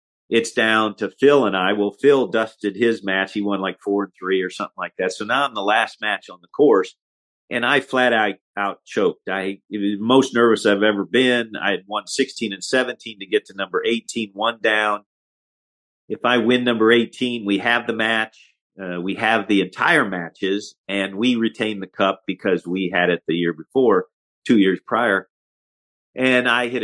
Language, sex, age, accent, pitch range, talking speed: English, male, 50-69, American, 95-120 Hz, 200 wpm